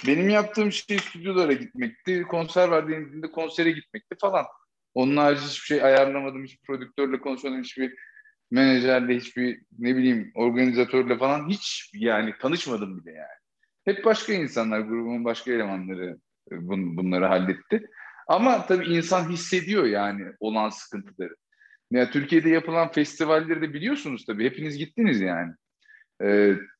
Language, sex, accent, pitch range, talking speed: Turkish, male, native, 120-185 Hz, 120 wpm